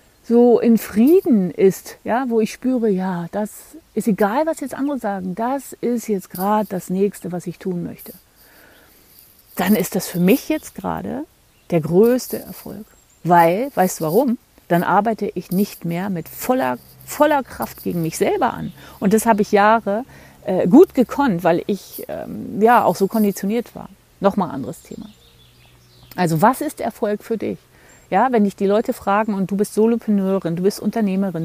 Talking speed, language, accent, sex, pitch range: 175 wpm, German, German, female, 180-230 Hz